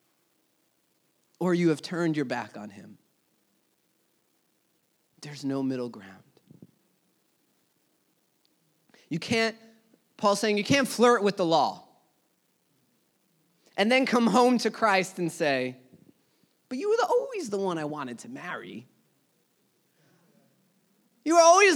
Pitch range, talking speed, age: 205-295 Hz, 120 wpm, 30-49